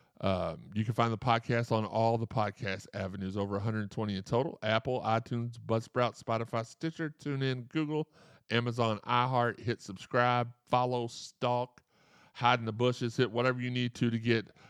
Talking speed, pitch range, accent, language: 160 wpm, 105-125 Hz, American, English